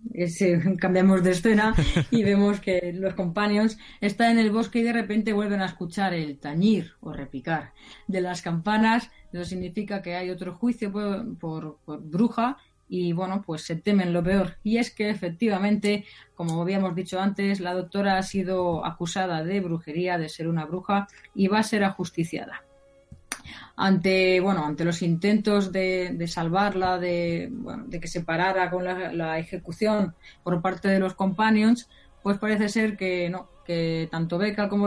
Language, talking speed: Spanish, 170 wpm